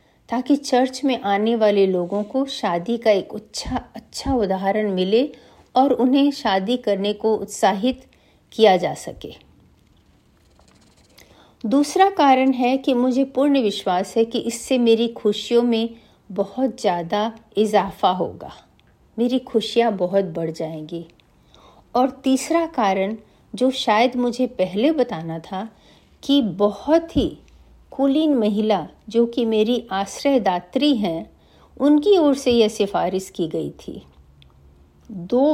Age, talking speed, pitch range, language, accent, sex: 50-69, 125 wpm, 185-255 Hz, Hindi, native, female